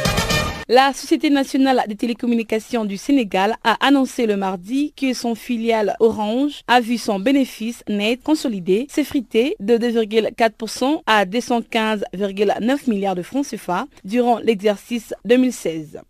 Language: French